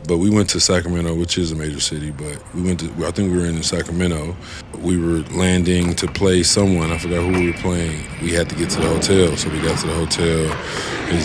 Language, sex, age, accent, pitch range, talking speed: English, male, 20-39, American, 80-95 Hz, 245 wpm